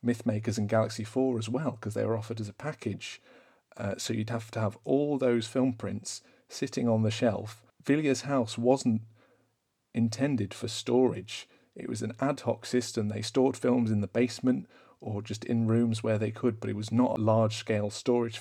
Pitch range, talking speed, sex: 110-120 Hz, 190 wpm, male